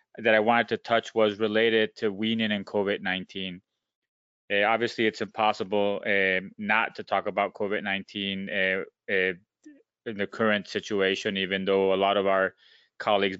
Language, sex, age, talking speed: English, male, 20-39, 150 wpm